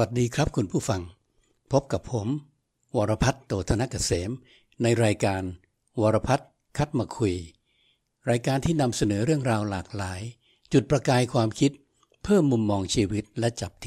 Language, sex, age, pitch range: Thai, male, 60-79, 105-125 Hz